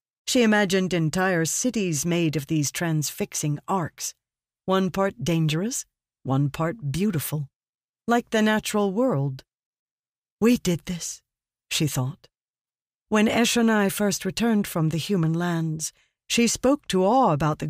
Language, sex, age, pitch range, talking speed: English, female, 50-69, 150-200 Hz, 130 wpm